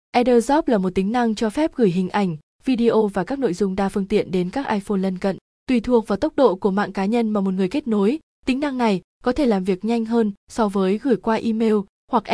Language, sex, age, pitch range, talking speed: Vietnamese, female, 20-39, 195-245 Hz, 255 wpm